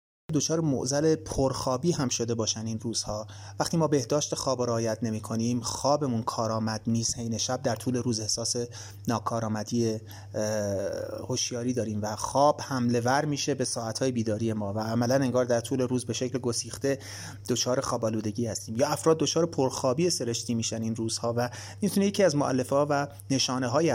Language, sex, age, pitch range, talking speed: Persian, male, 30-49, 110-140 Hz, 160 wpm